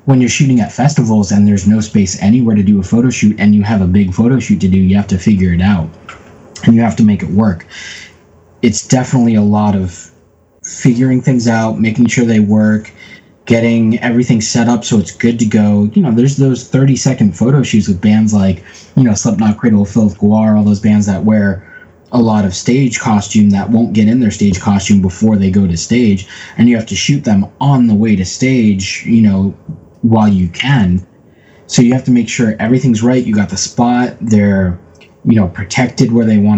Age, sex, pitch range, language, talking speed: 20-39, male, 100-120 Hz, English, 215 wpm